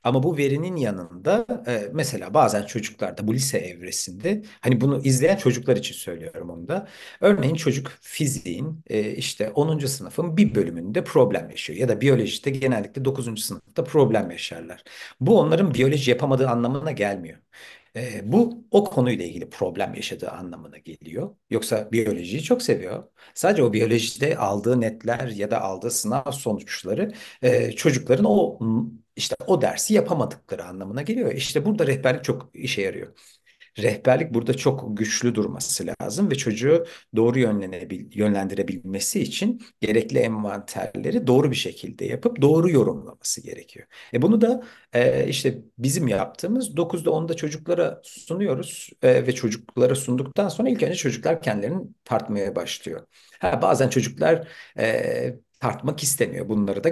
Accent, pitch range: native, 110-165 Hz